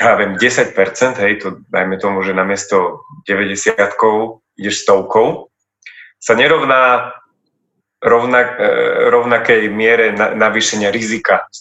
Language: Slovak